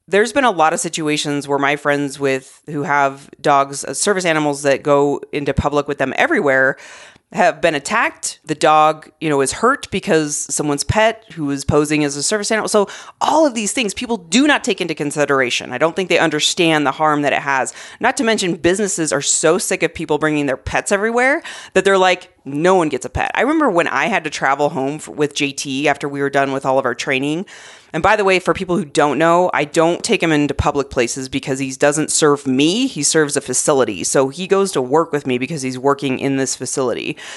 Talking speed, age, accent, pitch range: 230 wpm, 30-49, American, 135-170 Hz